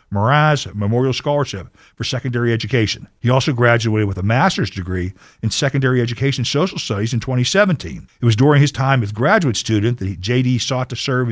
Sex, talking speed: male, 175 wpm